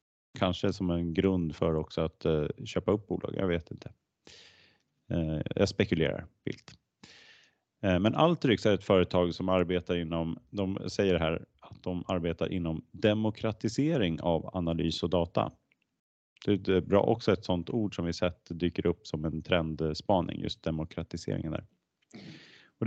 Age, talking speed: 30-49, 150 wpm